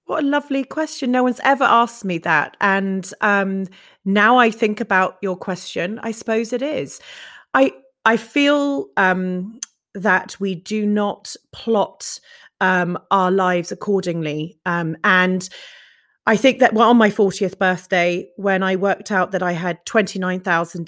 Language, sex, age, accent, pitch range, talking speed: English, female, 30-49, British, 185-235 Hz, 160 wpm